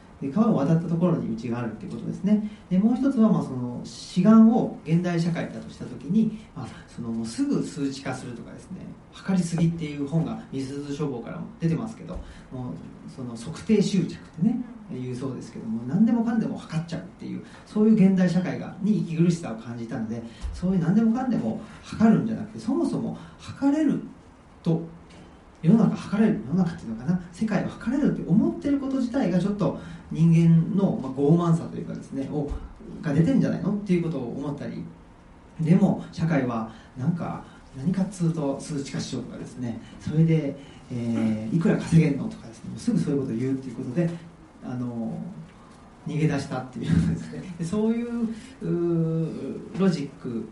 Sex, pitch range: male, 140-210 Hz